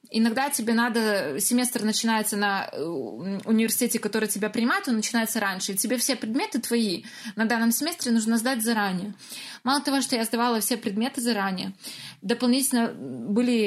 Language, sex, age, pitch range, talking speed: Russian, female, 20-39, 210-245 Hz, 150 wpm